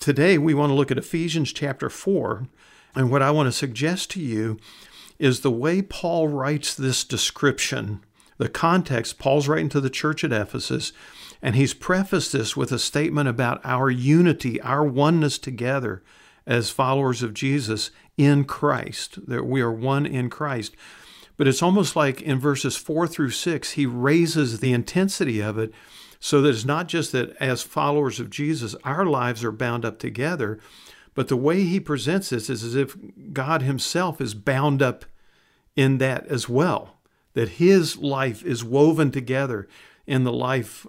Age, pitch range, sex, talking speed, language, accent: 50-69, 125-155 Hz, male, 170 wpm, English, American